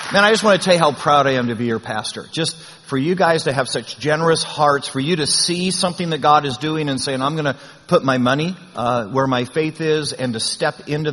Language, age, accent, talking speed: English, 50-69, American, 270 wpm